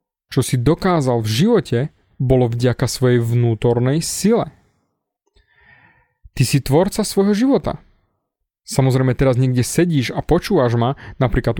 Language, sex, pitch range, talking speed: Slovak, male, 125-160 Hz, 120 wpm